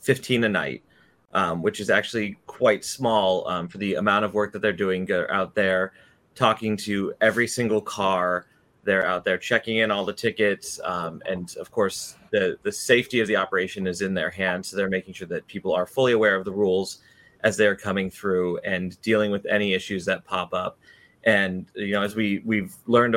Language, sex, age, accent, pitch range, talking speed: English, male, 30-49, American, 95-115 Hz, 200 wpm